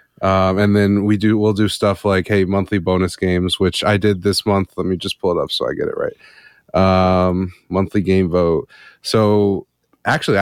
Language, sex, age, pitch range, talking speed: English, male, 30-49, 95-110 Hz, 215 wpm